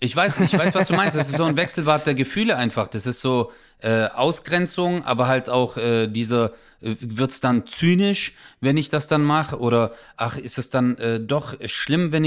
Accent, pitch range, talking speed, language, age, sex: German, 115-150 Hz, 210 wpm, English, 30-49, male